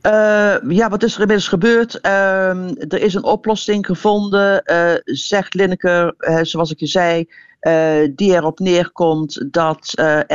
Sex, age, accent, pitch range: female, 50-69, Dutch, 155-190 Hz